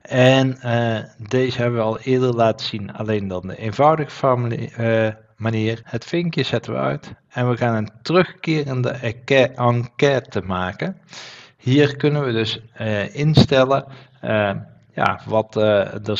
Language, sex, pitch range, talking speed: Dutch, male, 105-130 Hz, 145 wpm